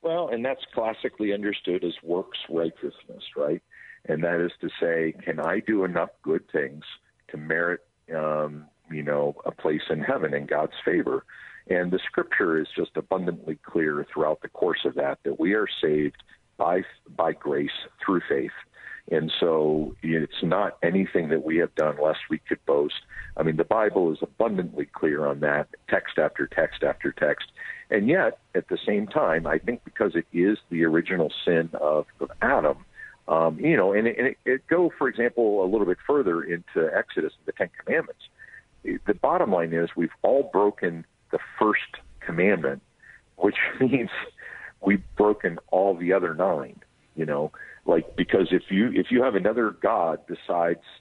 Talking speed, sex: 170 wpm, male